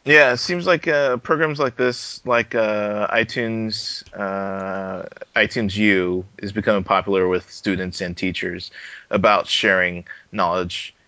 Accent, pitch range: American, 90-110 Hz